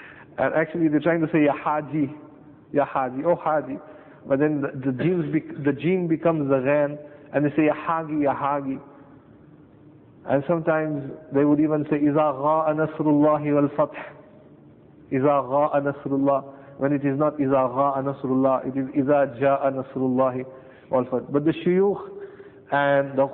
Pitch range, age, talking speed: 135-150 Hz, 50-69, 145 wpm